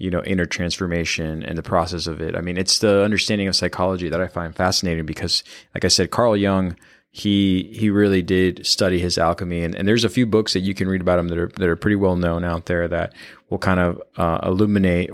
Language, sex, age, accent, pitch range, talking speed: English, male, 20-39, American, 90-100 Hz, 240 wpm